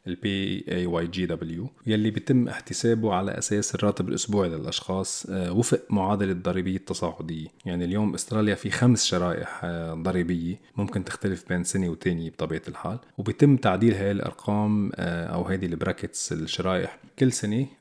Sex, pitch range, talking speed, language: male, 90-115 Hz, 135 wpm, Arabic